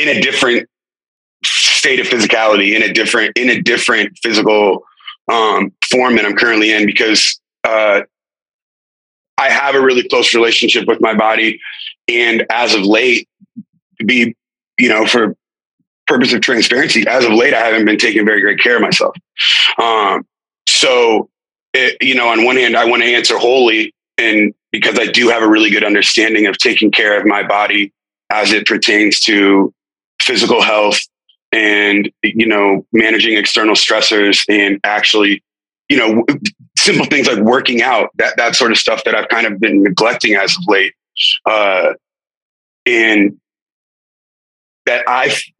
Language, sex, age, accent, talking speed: English, male, 30-49, American, 160 wpm